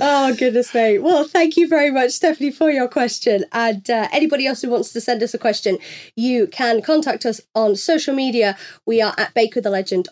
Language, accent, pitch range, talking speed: English, British, 200-250 Hz, 215 wpm